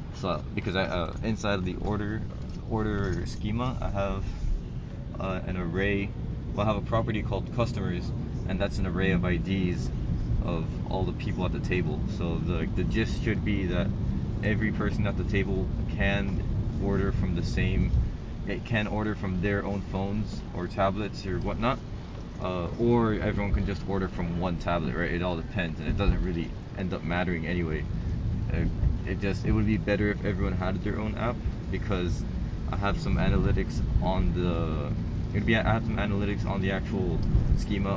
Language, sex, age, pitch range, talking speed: English, male, 20-39, 90-105 Hz, 180 wpm